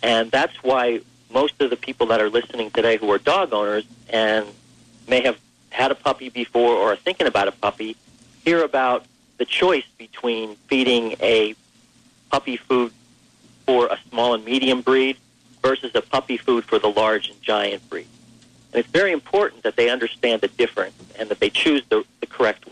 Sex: male